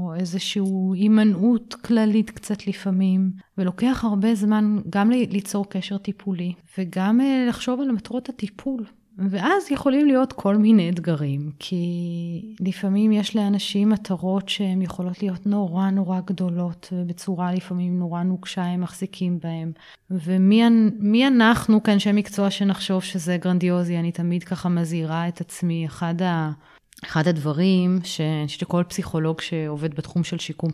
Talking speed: 130 wpm